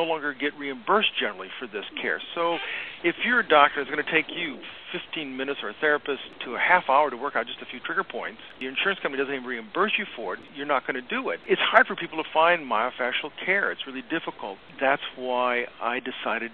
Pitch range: 125-165 Hz